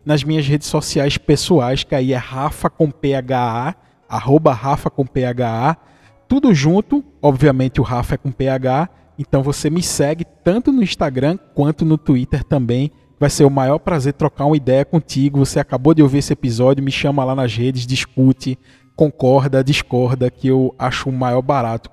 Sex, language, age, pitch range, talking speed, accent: male, Portuguese, 20-39, 130-160 Hz, 170 wpm, Brazilian